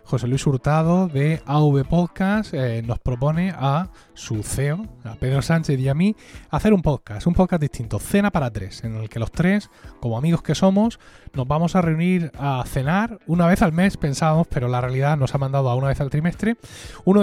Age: 20-39